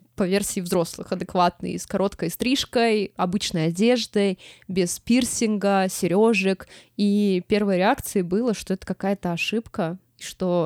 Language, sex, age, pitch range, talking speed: Russian, female, 20-39, 180-225 Hz, 120 wpm